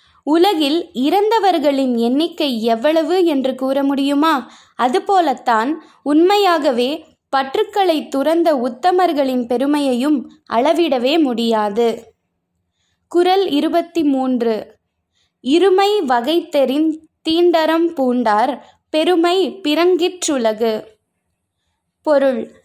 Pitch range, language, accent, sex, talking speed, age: 245-340 Hz, Tamil, native, female, 65 wpm, 20-39